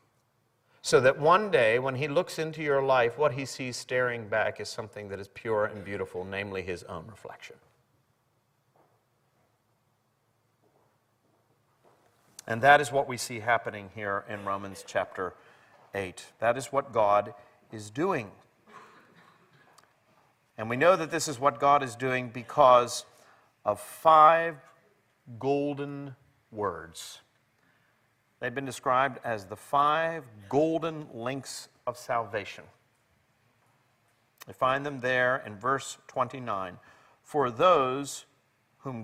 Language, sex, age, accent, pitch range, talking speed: English, male, 40-59, American, 115-140 Hz, 120 wpm